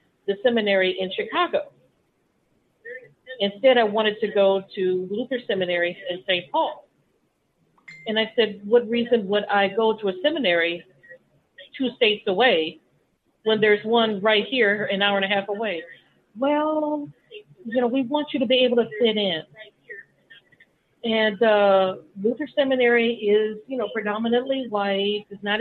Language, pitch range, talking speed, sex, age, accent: English, 190-245 Hz, 150 wpm, female, 40-59, American